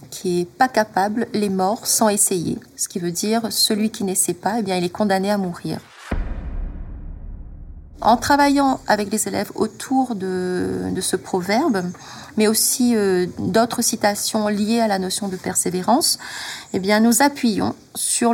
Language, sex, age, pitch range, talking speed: French, female, 30-49, 190-230 Hz, 160 wpm